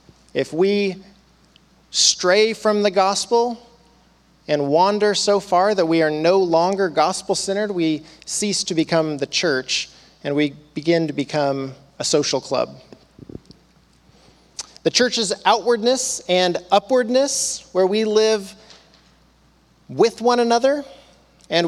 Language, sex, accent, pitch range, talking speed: English, male, American, 160-210 Hz, 115 wpm